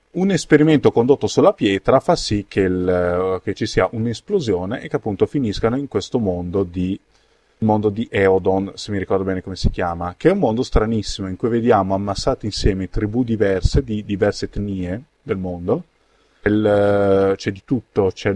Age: 30-49